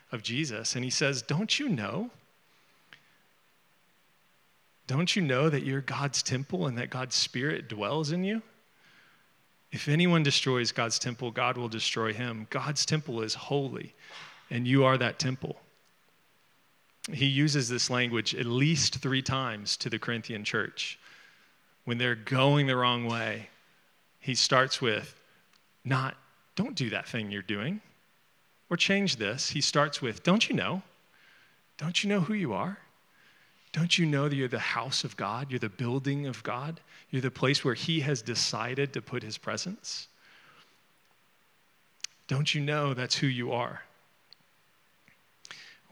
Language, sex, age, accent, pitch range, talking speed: English, male, 40-59, American, 115-150 Hz, 150 wpm